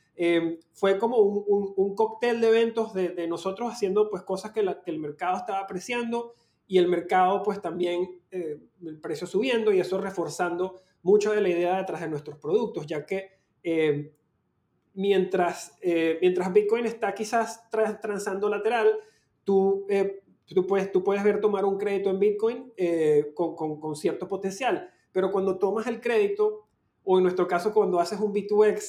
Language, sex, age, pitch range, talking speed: Spanish, male, 30-49, 175-215 Hz, 175 wpm